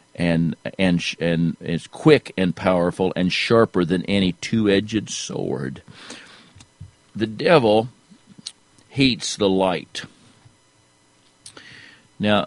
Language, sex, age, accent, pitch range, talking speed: English, male, 50-69, American, 95-120 Hz, 90 wpm